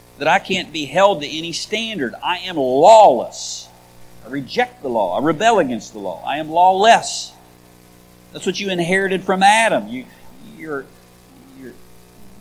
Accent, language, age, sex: American, English, 50-69, male